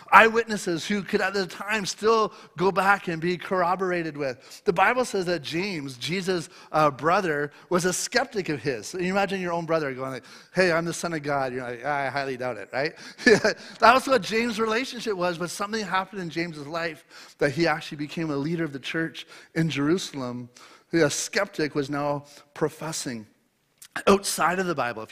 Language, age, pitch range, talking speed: English, 30-49, 145-185 Hz, 190 wpm